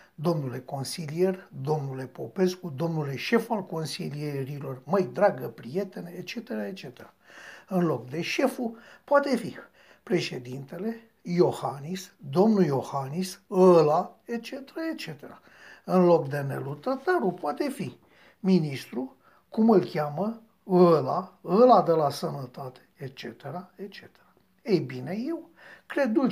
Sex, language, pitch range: male, Romanian, 150-225 Hz